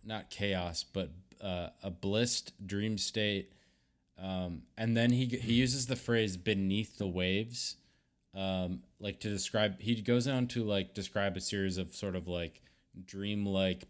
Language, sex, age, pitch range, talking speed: English, male, 20-39, 85-110 Hz, 155 wpm